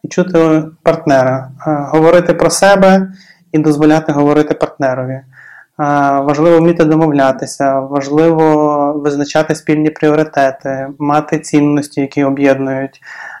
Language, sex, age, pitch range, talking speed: Ukrainian, male, 20-39, 145-160 Hz, 95 wpm